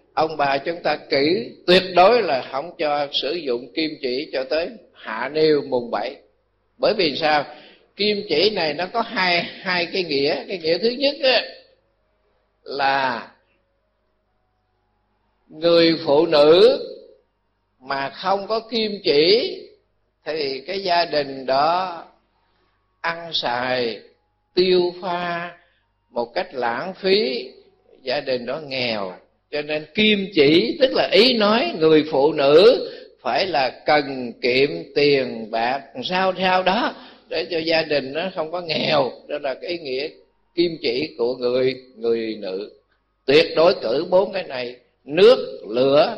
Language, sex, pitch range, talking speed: Vietnamese, male, 125-205 Hz, 145 wpm